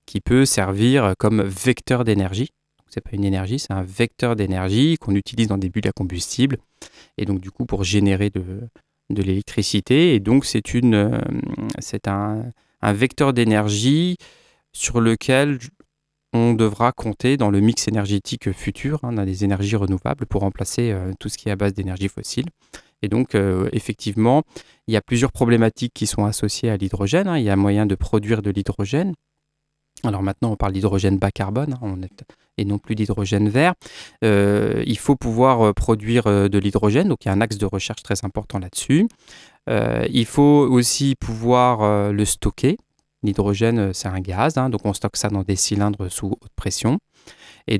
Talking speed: 175 wpm